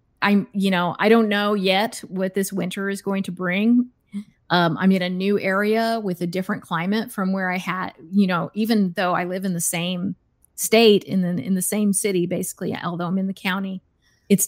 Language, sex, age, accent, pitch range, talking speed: English, female, 30-49, American, 180-205 Hz, 210 wpm